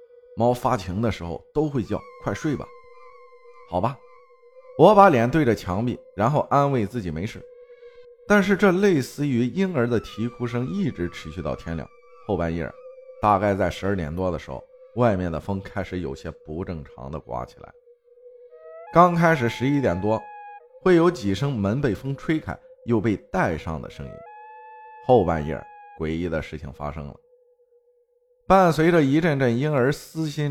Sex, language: male, Chinese